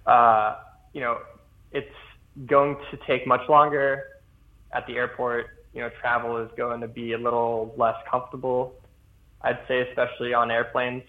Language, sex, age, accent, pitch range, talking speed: English, male, 20-39, American, 115-135 Hz, 150 wpm